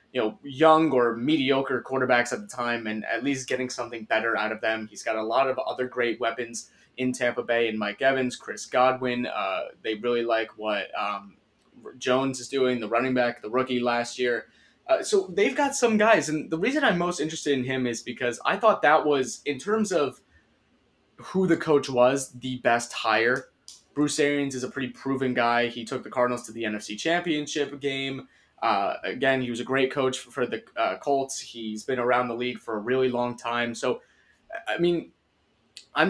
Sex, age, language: male, 20-39, English